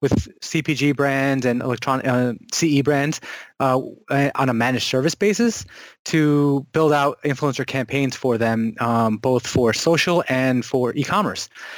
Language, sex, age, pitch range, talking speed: English, male, 20-39, 125-140 Hz, 140 wpm